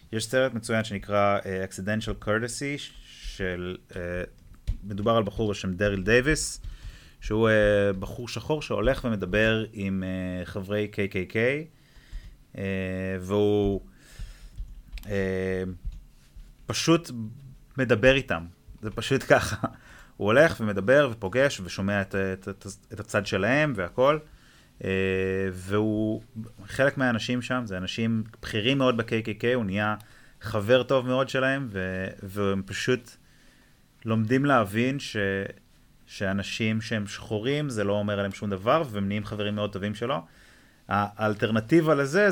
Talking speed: 110 wpm